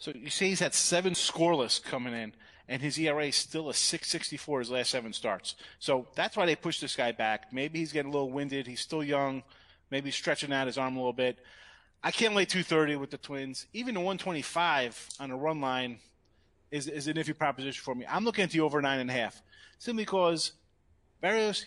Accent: American